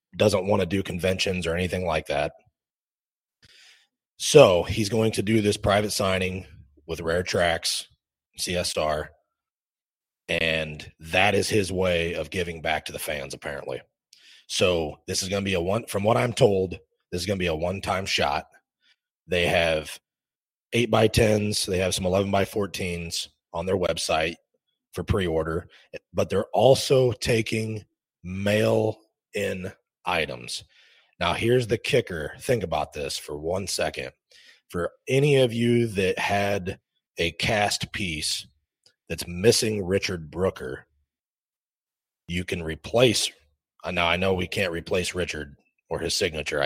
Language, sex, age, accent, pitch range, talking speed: English, male, 30-49, American, 85-105 Hz, 150 wpm